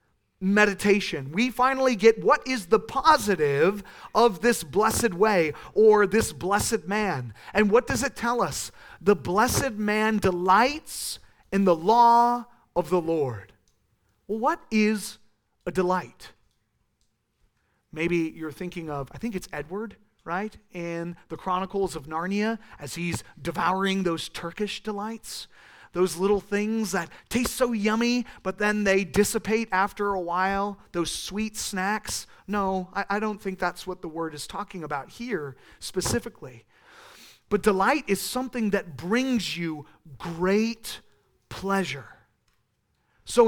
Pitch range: 175-225 Hz